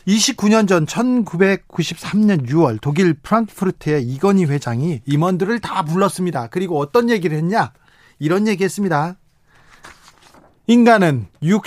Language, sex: Korean, male